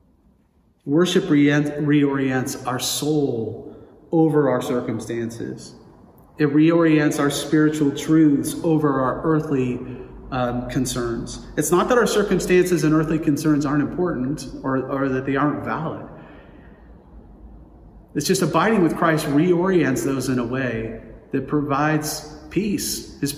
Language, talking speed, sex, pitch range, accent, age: English, 120 wpm, male, 130-165 Hz, American, 40-59